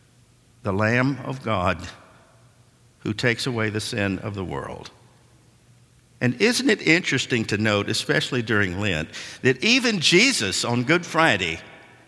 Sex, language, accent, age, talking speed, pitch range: male, English, American, 50-69, 135 wpm, 115-145 Hz